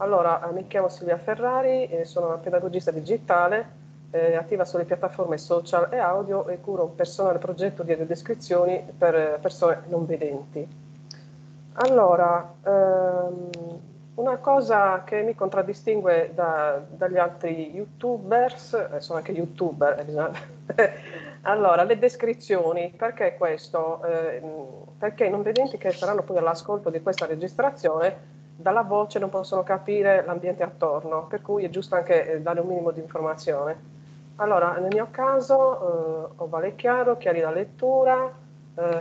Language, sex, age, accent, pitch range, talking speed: Italian, female, 40-59, native, 165-200 Hz, 140 wpm